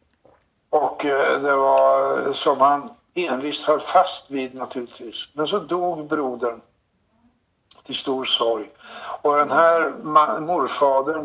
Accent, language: native, Swedish